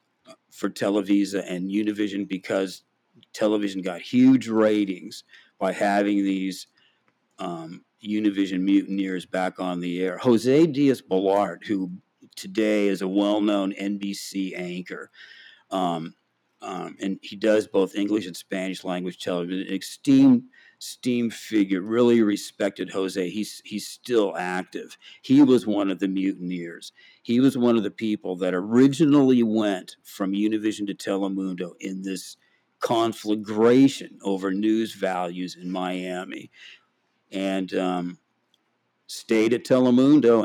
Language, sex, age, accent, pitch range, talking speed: English, male, 50-69, American, 95-110 Hz, 120 wpm